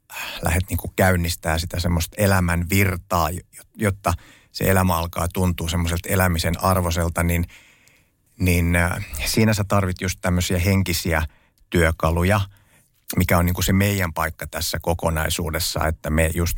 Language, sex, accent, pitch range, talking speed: Finnish, male, native, 85-95 Hz, 125 wpm